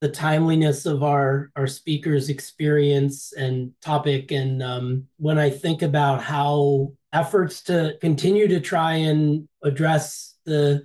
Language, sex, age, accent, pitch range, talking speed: English, male, 30-49, American, 140-155 Hz, 135 wpm